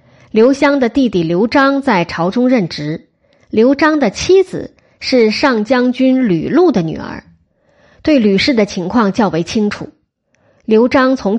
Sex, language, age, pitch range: female, Chinese, 20-39, 190-270 Hz